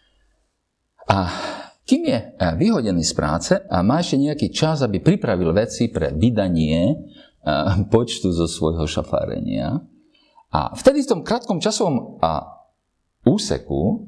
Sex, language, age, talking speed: male, Slovak, 50-69, 115 wpm